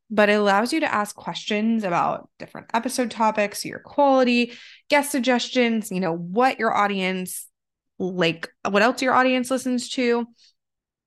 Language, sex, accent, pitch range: English, female, American, 180-240 Hz